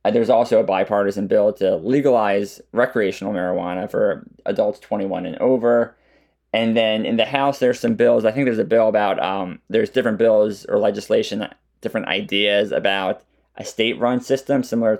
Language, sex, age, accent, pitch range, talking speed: English, male, 20-39, American, 100-130 Hz, 170 wpm